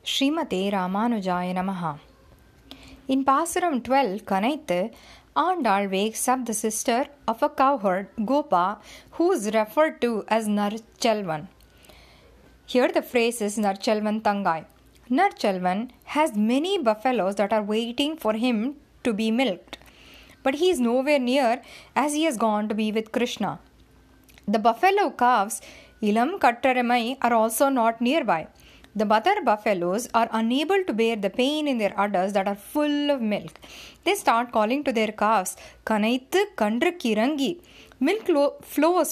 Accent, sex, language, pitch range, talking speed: Indian, female, English, 215-285 Hz, 140 wpm